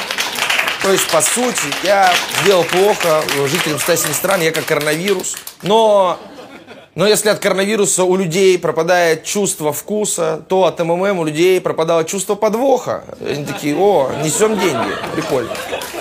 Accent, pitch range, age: native, 165-200 Hz, 20-39